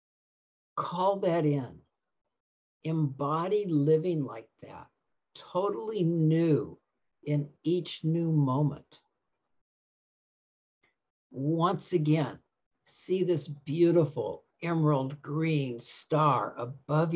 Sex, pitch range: male, 145-175 Hz